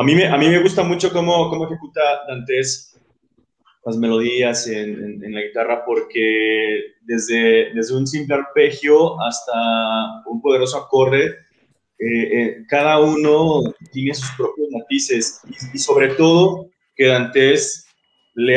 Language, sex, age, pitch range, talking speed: Spanish, male, 20-39, 120-165 Hz, 140 wpm